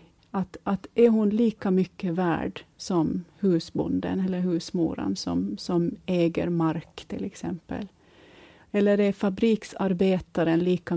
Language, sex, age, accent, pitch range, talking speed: Swedish, female, 30-49, native, 170-205 Hz, 115 wpm